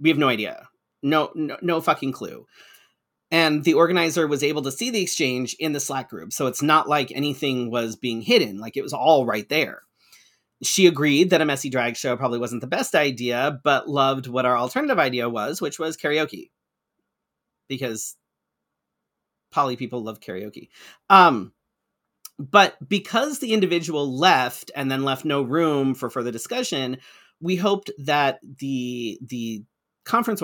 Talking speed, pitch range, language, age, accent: 165 wpm, 130-165 Hz, English, 40-59, American